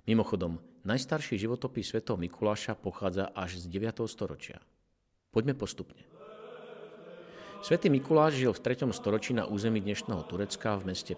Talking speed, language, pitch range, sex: 130 wpm, Slovak, 100-145 Hz, male